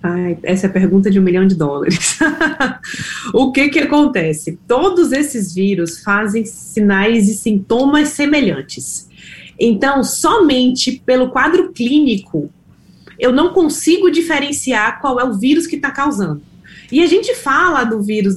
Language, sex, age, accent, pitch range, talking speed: Portuguese, female, 20-39, Brazilian, 205-285 Hz, 140 wpm